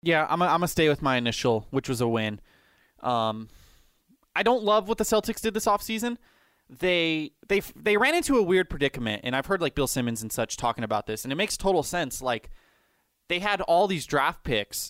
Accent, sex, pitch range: American, male, 120-175 Hz